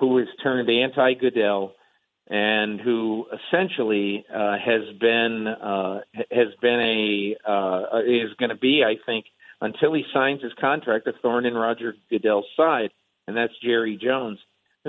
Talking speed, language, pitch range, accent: 150 wpm, English, 105-130 Hz, American